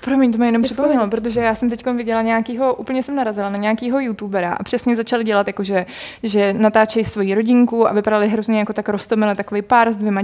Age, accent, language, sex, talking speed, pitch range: 20-39, native, Czech, female, 215 wpm, 210-240 Hz